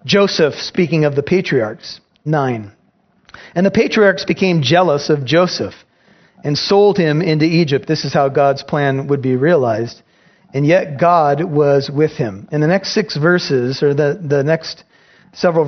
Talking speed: 160 wpm